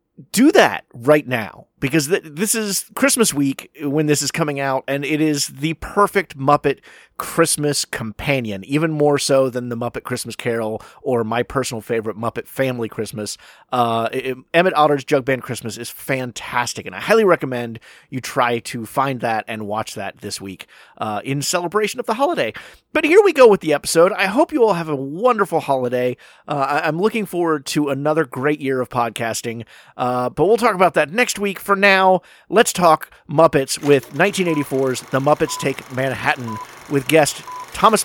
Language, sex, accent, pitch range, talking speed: English, male, American, 120-165 Hz, 180 wpm